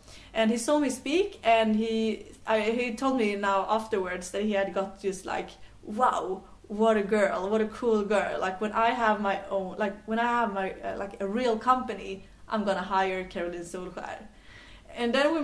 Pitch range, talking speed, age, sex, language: 205-240 Hz, 200 wpm, 20-39, female, English